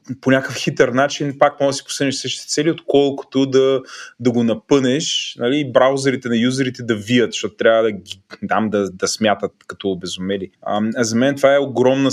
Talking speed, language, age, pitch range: 190 wpm, Bulgarian, 20-39, 110-140 Hz